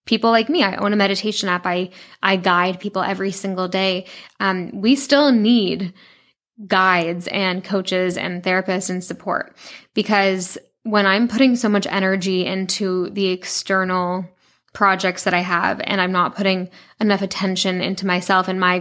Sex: female